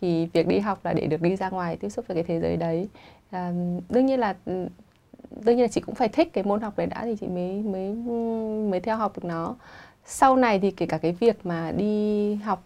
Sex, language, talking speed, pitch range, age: female, Vietnamese, 245 wpm, 175-220 Hz, 20-39